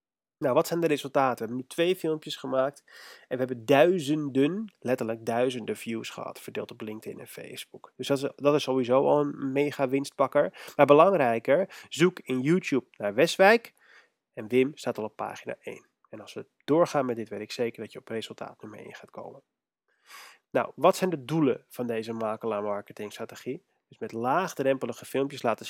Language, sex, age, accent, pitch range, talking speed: Dutch, male, 30-49, Dutch, 125-165 Hz, 185 wpm